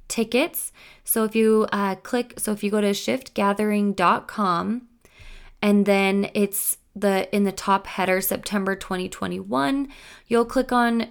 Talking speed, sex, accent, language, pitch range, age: 135 wpm, female, American, English, 180-220 Hz, 20-39